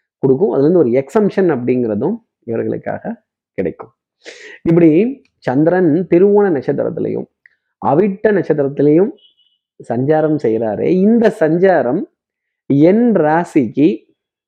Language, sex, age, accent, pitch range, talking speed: Tamil, male, 20-39, native, 130-180 Hz, 85 wpm